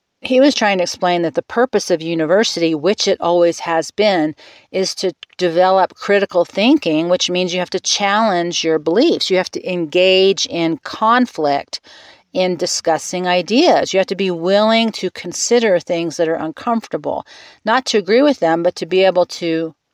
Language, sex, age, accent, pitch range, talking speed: English, female, 40-59, American, 170-225 Hz, 175 wpm